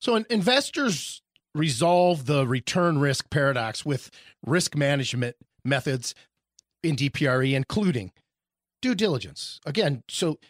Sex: male